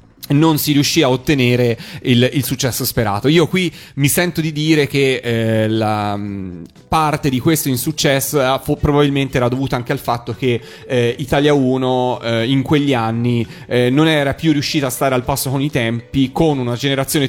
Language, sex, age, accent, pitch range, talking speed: Italian, male, 30-49, native, 120-145 Hz, 175 wpm